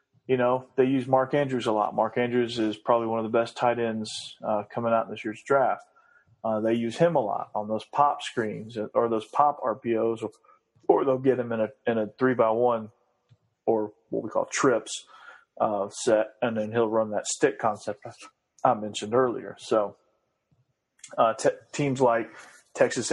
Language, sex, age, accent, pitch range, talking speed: English, male, 30-49, American, 110-125 Hz, 190 wpm